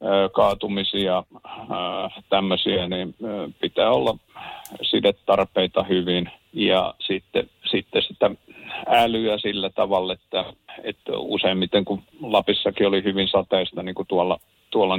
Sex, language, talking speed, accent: male, Finnish, 105 wpm, native